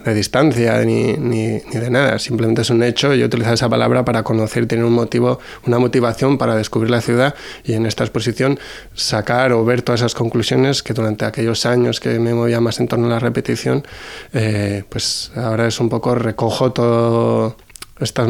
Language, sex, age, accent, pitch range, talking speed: Spanish, male, 20-39, Spanish, 110-120 Hz, 195 wpm